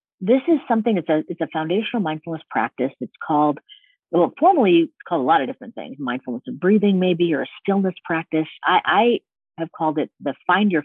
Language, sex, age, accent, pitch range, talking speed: English, female, 50-69, American, 140-210 Hz, 205 wpm